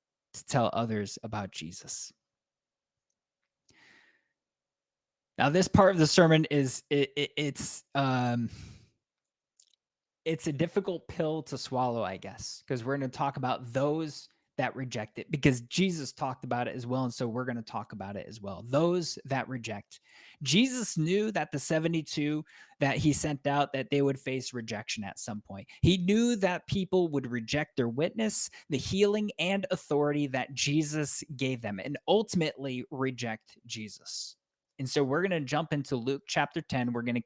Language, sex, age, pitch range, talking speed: English, male, 20-39, 125-160 Hz, 160 wpm